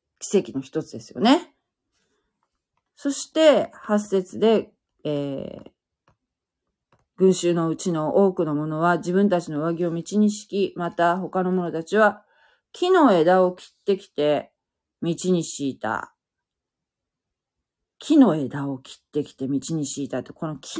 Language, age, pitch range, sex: Japanese, 40-59, 155-235 Hz, female